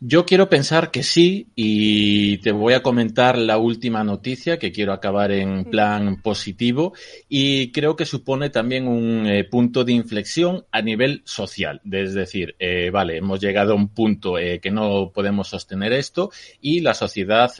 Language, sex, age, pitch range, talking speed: Spanish, male, 30-49, 100-130 Hz, 170 wpm